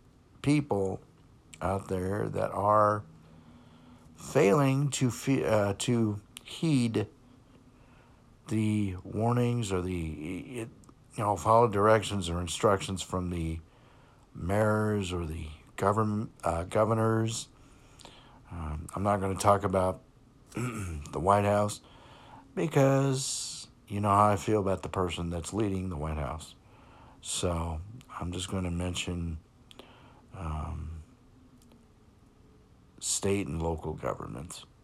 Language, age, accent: English, 50-69, American